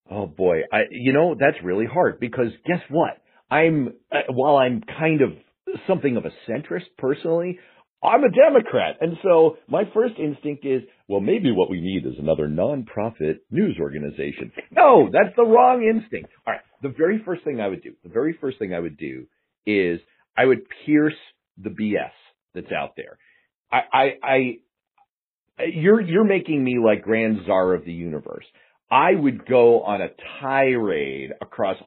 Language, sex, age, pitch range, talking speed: English, male, 50-69, 105-175 Hz, 170 wpm